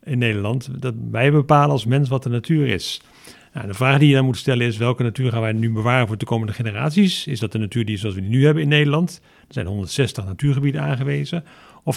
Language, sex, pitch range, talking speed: Dutch, male, 115-145 Hz, 245 wpm